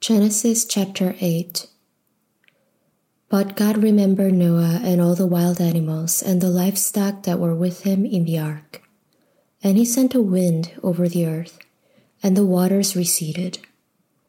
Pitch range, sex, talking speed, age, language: 175-205 Hz, female, 145 wpm, 20-39, English